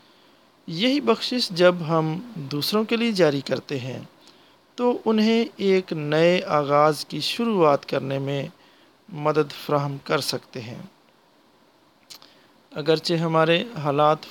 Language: English